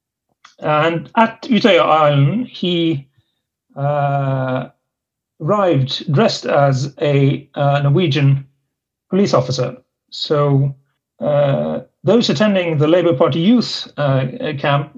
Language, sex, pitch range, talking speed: English, male, 135-165 Hz, 95 wpm